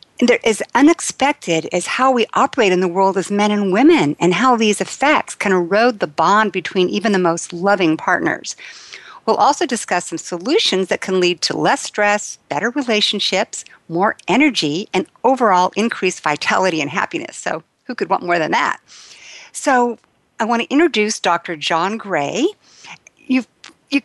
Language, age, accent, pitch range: English, 60-79, American, 175-235 Hz